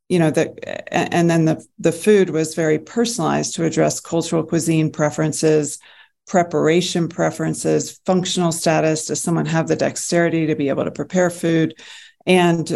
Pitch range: 155-180 Hz